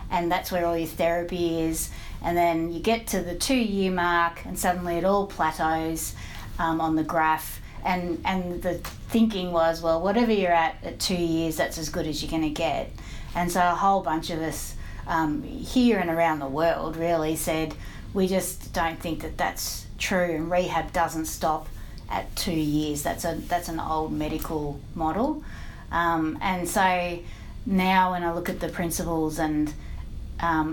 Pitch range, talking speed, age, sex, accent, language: 155-180 Hz, 180 wpm, 30-49, female, Australian, English